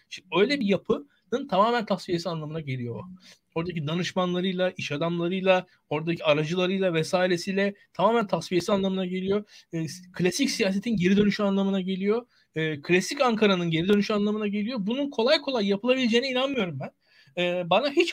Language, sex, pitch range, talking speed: Turkish, male, 180-235 Hz, 125 wpm